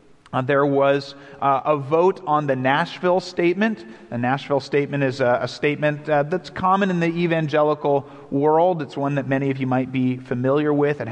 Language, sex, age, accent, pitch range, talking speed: English, male, 40-59, American, 130-155 Hz, 190 wpm